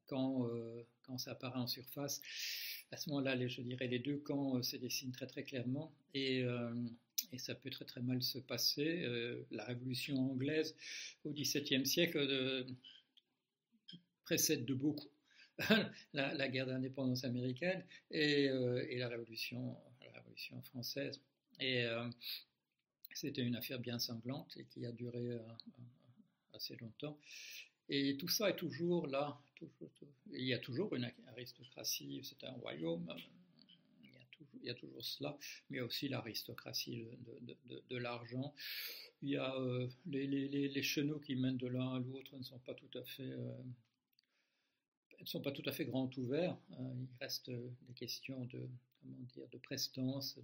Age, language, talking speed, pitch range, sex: 60-79, French, 170 wpm, 120-140 Hz, male